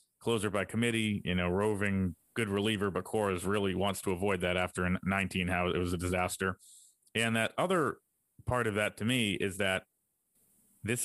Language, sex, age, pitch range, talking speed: English, male, 30-49, 90-100 Hz, 180 wpm